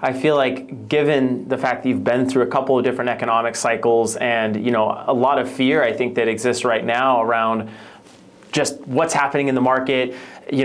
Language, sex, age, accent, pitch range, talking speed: English, male, 30-49, American, 115-150 Hz, 210 wpm